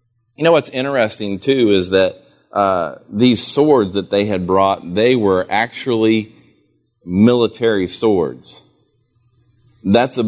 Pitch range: 105-135 Hz